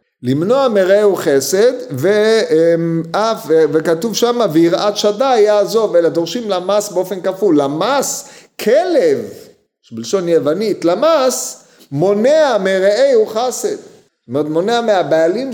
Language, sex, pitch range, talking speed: Hebrew, male, 120-200 Hz, 95 wpm